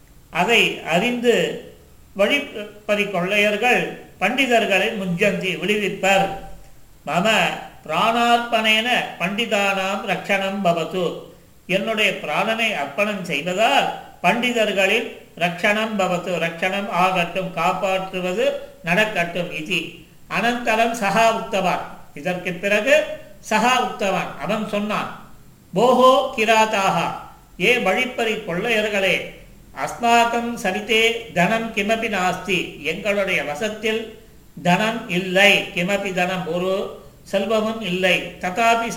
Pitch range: 180-225 Hz